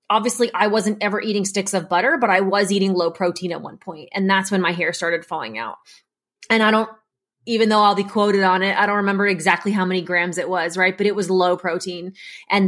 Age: 20-39